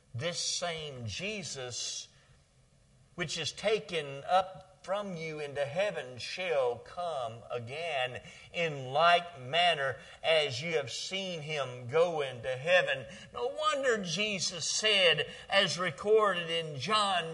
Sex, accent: male, American